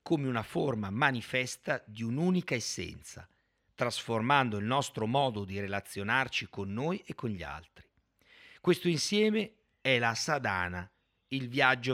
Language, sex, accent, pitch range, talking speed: Italian, male, native, 105-145 Hz, 130 wpm